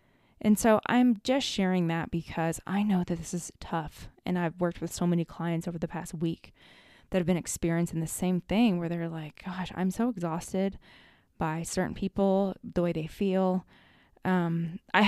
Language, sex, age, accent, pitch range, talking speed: English, female, 20-39, American, 170-205 Hz, 185 wpm